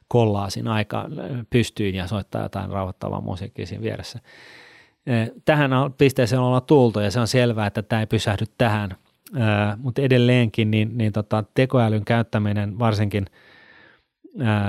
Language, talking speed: Finnish, 140 wpm